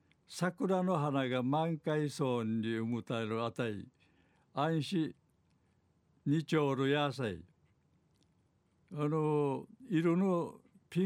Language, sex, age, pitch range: Japanese, male, 60-79, 125-155 Hz